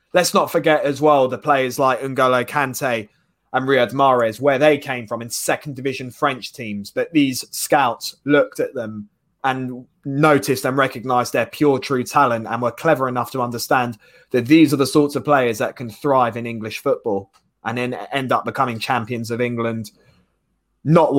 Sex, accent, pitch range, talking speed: male, British, 120-145 Hz, 180 wpm